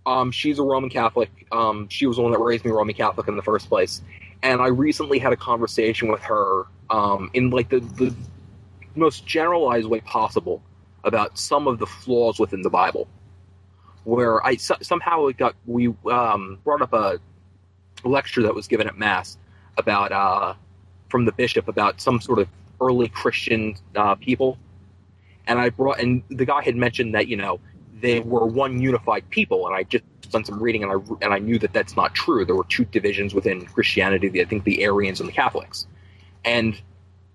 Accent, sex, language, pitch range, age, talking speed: American, male, English, 95-125 Hz, 30-49, 190 wpm